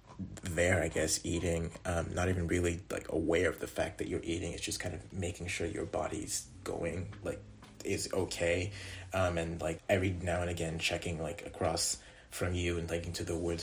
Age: 30-49